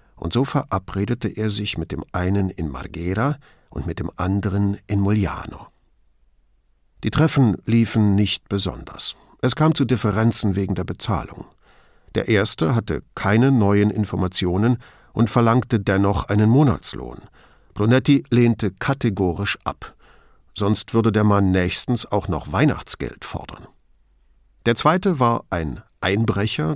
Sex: male